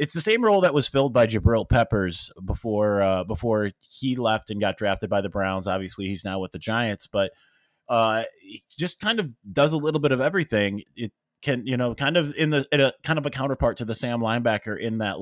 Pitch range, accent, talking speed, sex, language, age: 110-130 Hz, American, 235 wpm, male, English, 30-49